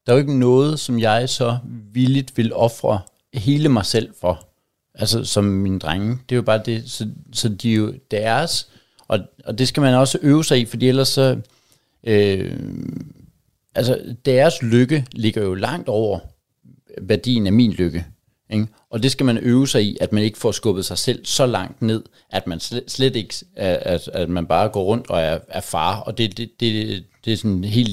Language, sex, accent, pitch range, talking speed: Danish, male, native, 105-125 Hz, 200 wpm